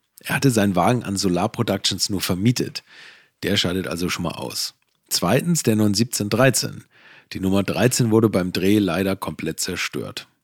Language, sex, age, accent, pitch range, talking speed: German, male, 40-59, German, 95-125 Hz, 155 wpm